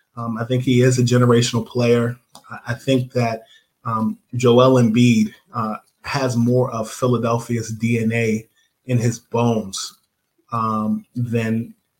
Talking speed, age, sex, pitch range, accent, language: 125 wpm, 20-39, male, 115-120 Hz, American, English